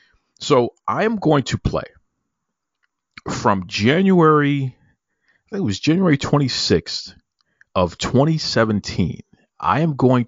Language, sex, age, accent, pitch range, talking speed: English, male, 40-59, American, 95-130 Hz, 125 wpm